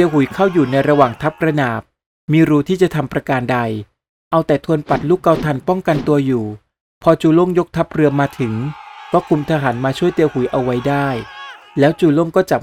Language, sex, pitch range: Thai, male, 130-160 Hz